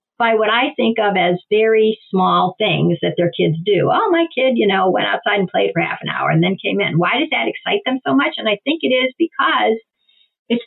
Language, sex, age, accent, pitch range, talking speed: English, female, 50-69, American, 230-320 Hz, 245 wpm